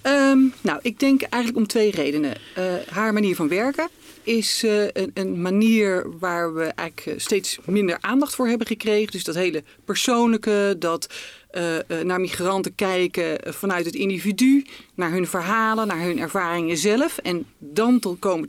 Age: 40-59